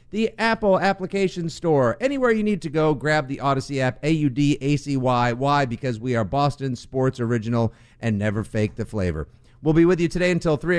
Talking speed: 185 wpm